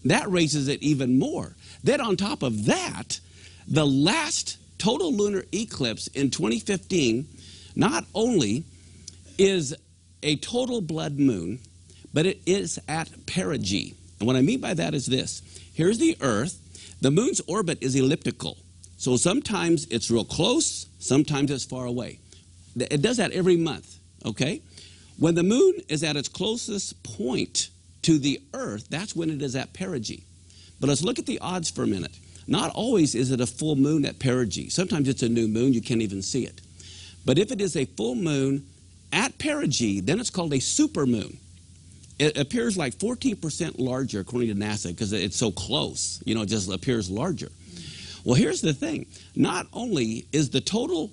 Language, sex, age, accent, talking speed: English, male, 50-69, American, 175 wpm